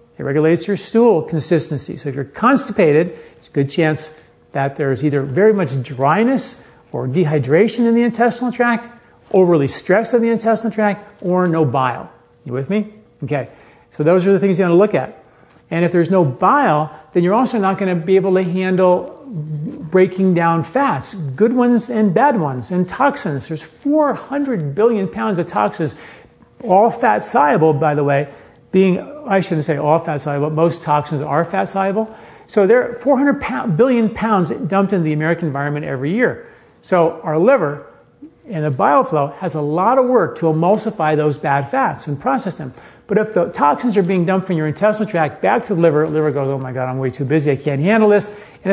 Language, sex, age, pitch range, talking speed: English, male, 40-59, 150-215 Hz, 195 wpm